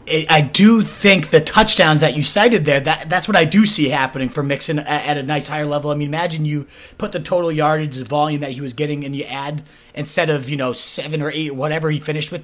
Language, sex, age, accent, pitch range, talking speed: English, male, 30-49, American, 145-170 Hz, 250 wpm